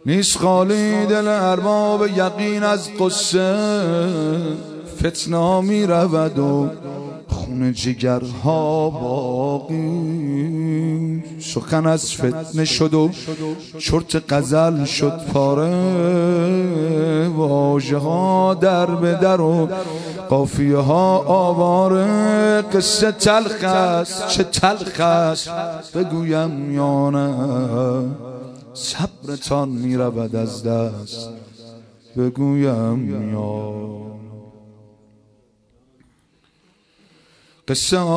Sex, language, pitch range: male, Persian, 140-180 Hz